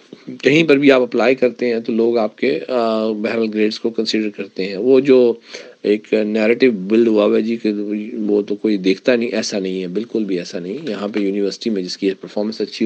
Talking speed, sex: 215 wpm, male